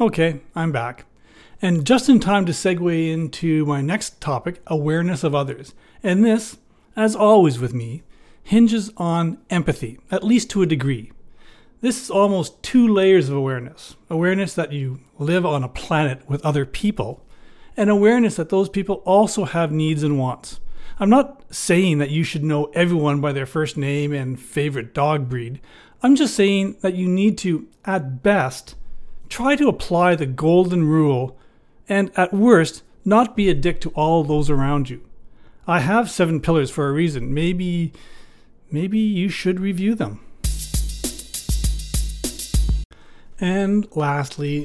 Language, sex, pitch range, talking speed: English, male, 140-195 Hz, 155 wpm